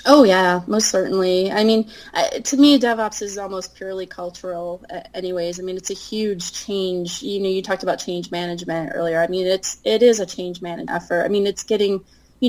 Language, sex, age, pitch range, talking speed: English, female, 20-39, 175-210 Hz, 205 wpm